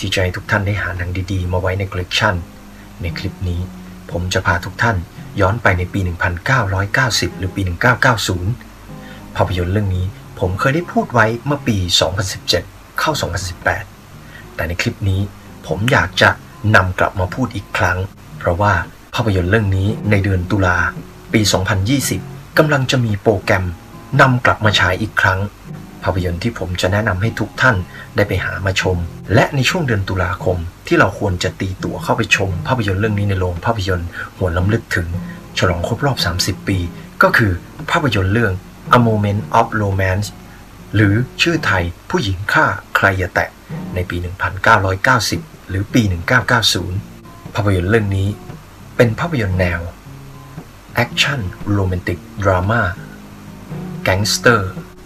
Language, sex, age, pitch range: Thai, male, 30-49, 90-115 Hz